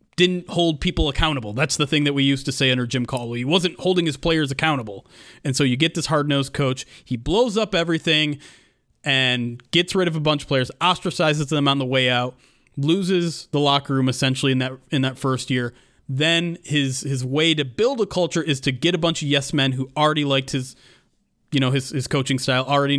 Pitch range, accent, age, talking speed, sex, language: 130-150 Hz, American, 30-49, 220 wpm, male, English